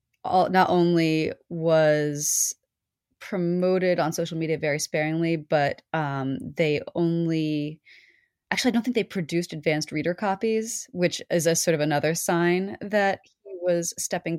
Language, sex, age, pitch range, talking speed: English, female, 20-39, 150-180 Hz, 140 wpm